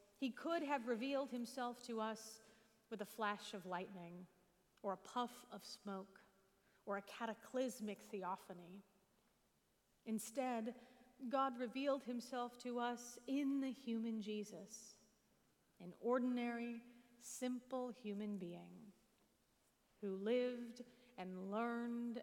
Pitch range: 205-245 Hz